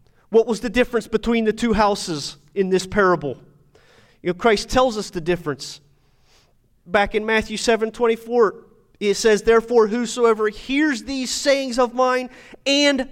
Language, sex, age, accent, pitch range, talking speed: English, male, 30-49, American, 190-250 Hz, 145 wpm